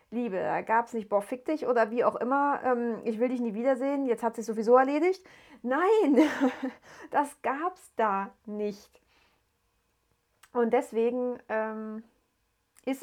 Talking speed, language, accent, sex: 155 wpm, German, German, female